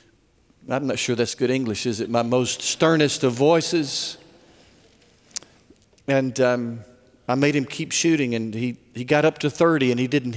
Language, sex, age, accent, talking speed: English, male, 50-69, American, 175 wpm